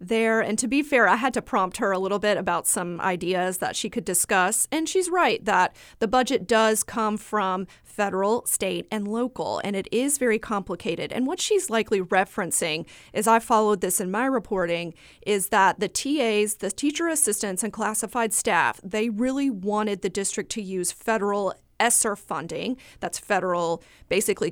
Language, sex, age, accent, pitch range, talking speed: English, female, 30-49, American, 195-240 Hz, 180 wpm